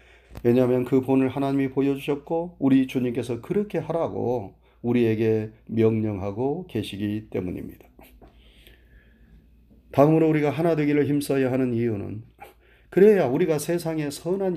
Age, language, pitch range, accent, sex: 40-59, Korean, 115-165 Hz, native, male